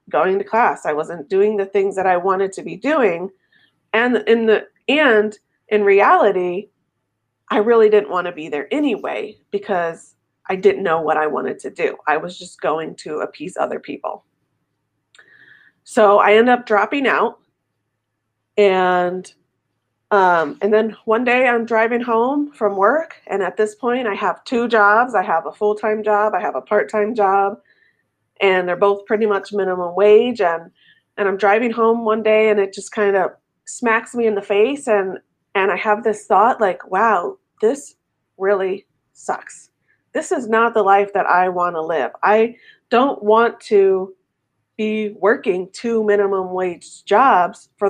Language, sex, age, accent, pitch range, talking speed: English, female, 30-49, American, 185-225 Hz, 170 wpm